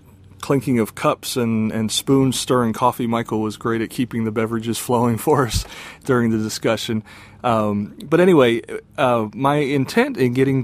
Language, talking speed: English, 165 wpm